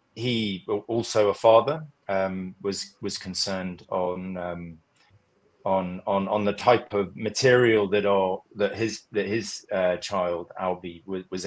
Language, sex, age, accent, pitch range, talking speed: English, male, 20-39, British, 95-115 Hz, 145 wpm